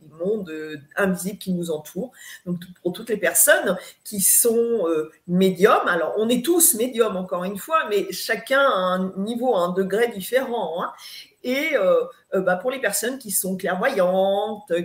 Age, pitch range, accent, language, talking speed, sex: 40-59, 185-235 Hz, French, French, 165 wpm, female